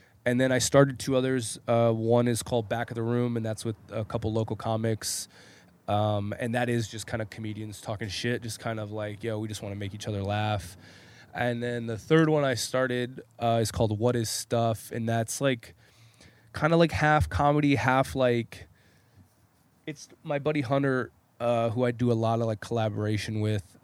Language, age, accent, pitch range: English, 20-39, American, 110-125 Hz